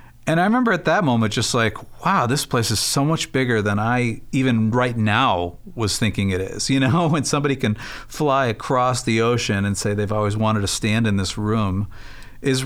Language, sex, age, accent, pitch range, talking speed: English, male, 50-69, American, 105-125 Hz, 210 wpm